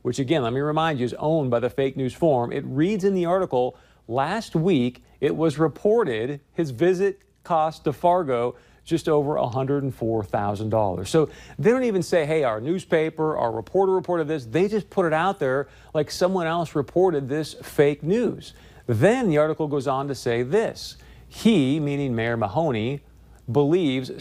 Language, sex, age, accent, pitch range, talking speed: English, male, 40-59, American, 125-170 Hz, 170 wpm